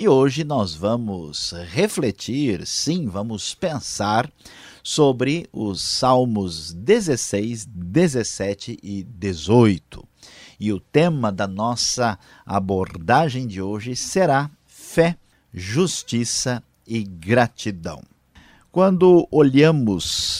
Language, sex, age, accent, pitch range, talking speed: Portuguese, male, 50-69, Brazilian, 100-125 Hz, 90 wpm